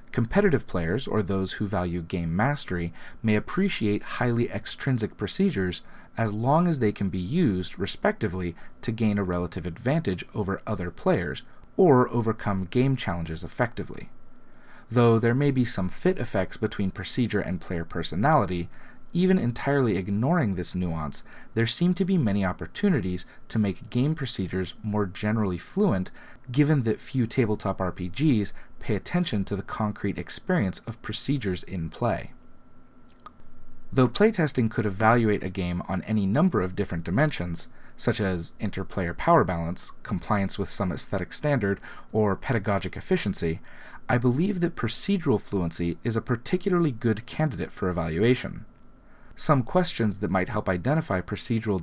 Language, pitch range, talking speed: English, 95-125 Hz, 140 wpm